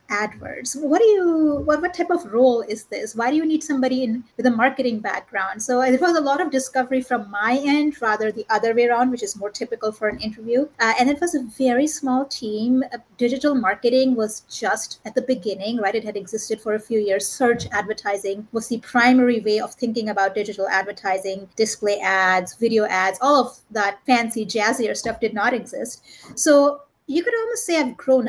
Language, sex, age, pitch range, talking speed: English, female, 30-49, 210-260 Hz, 210 wpm